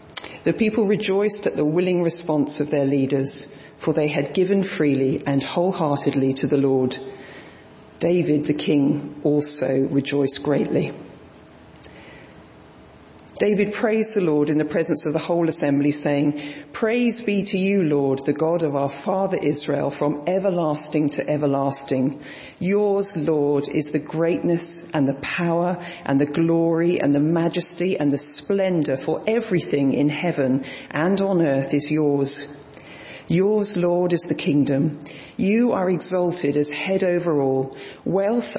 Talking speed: 145 wpm